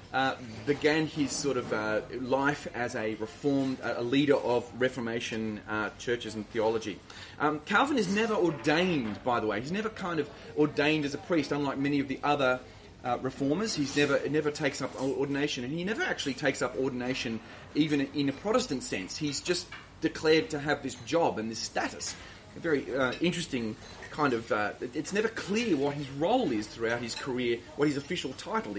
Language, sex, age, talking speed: English, male, 30-49, 190 wpm